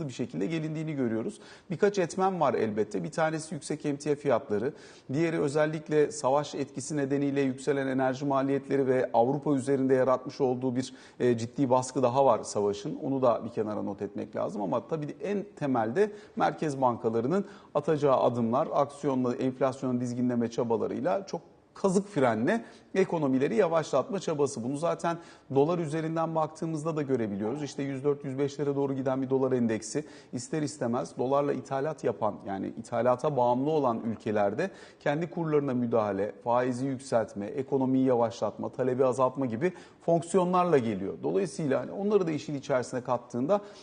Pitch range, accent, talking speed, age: 125-160 Hz, native, 135 wpm, 40-59